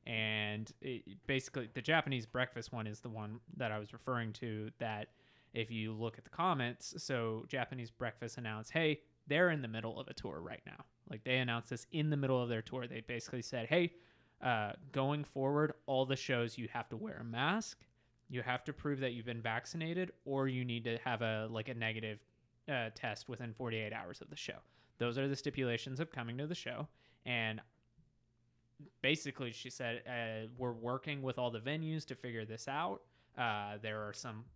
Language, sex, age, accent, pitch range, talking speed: English, male, 20-39, American, 115-140 Hz, 200 wpm